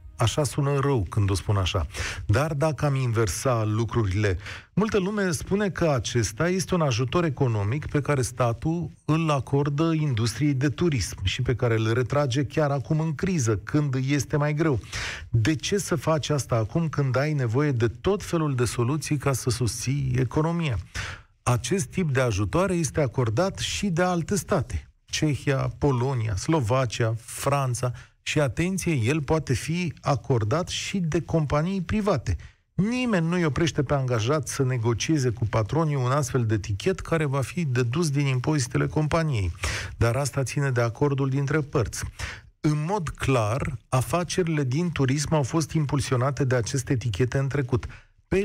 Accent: native